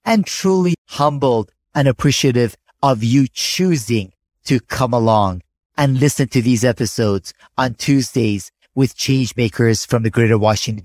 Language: English